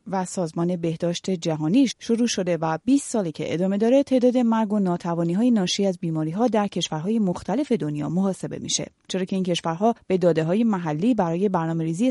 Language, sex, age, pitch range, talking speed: Persian, female, 30-49, 170-225 Hz, 175 wpm